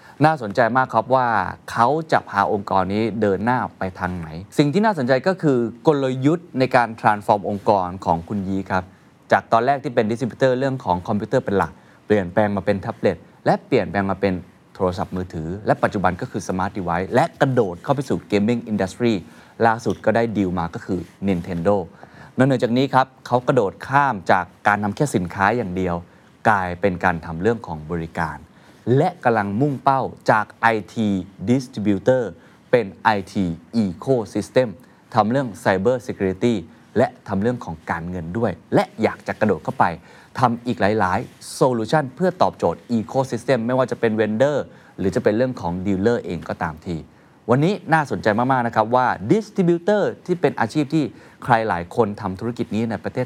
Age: 20-39